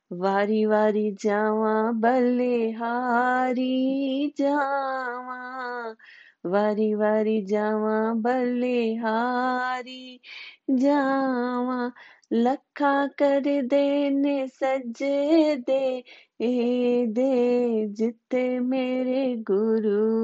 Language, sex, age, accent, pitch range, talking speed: Hindi, female, 30-49, native, 225-265 Hz, 65 wpm